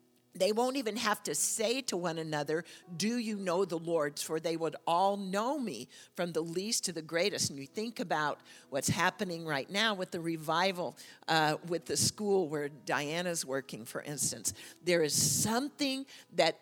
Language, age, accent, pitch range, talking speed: English, 50-69, American, 155-195 Hz, 180 wpm